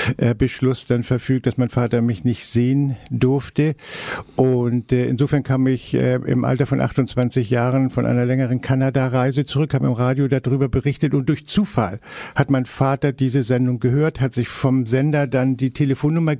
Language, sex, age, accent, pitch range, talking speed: German, male, 60-79, German, 130-145 Hz, 165 wpm